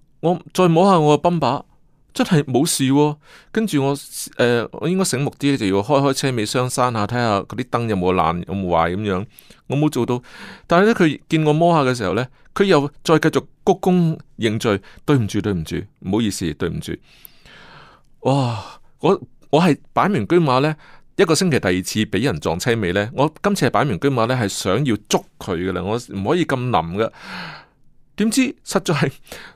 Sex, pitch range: male, 105-160 Hz